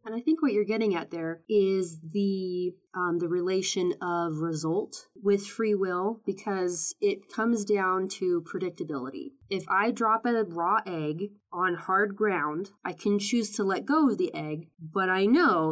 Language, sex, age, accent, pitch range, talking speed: English, female, 20-39, American, 175-215 Hz, 170 wpm